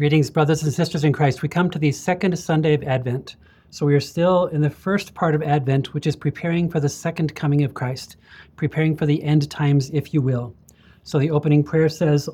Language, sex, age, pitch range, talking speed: English, male, 30-49, 140-165 Hz, 225 wpm